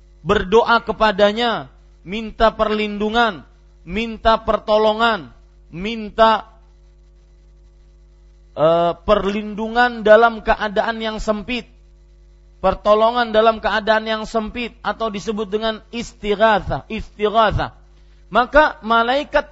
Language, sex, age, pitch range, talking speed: Malay, male, 40-59, 140-220 Hz, 75 wpm